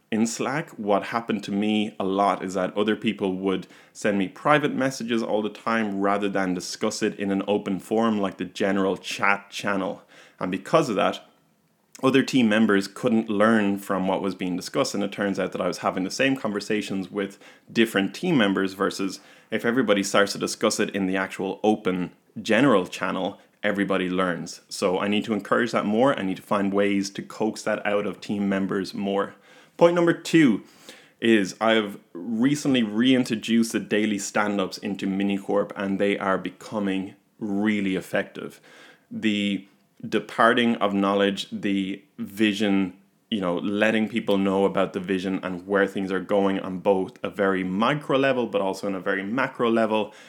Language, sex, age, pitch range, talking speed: English, male, 20-39, 95-110 Hz, 175 wpm